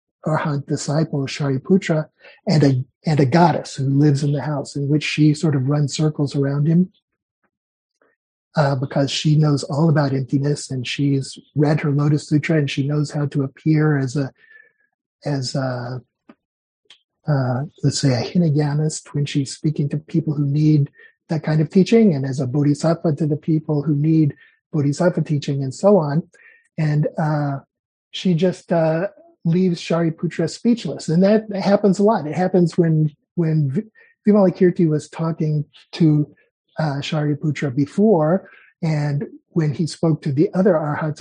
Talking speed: 155 wpm